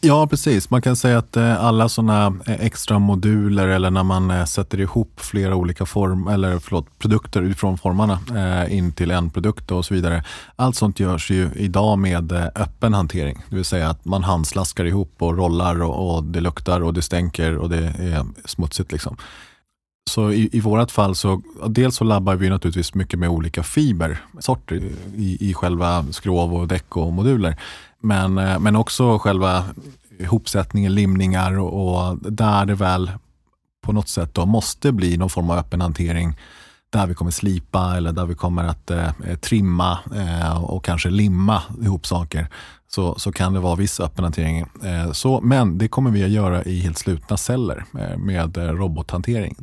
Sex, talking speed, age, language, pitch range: male, 170 wpm, 30-49, Swedish, 85-105 Hz